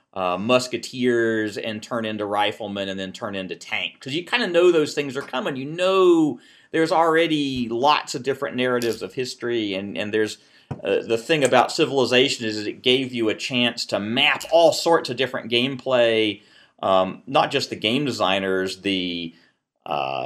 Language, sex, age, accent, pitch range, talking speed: English, male, 40-59, American, 110-145 Hz, 175 wpm